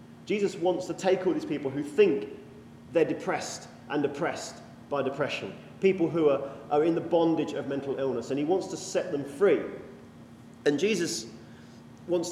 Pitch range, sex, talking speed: 140-180 Hz, male, 170 wpm